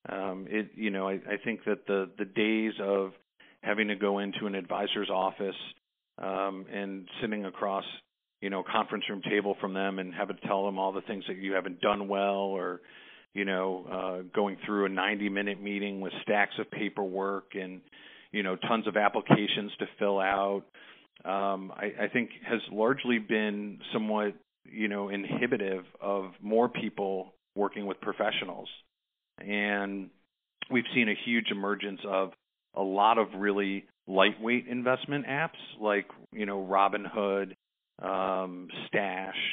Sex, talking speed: male, 155 wpm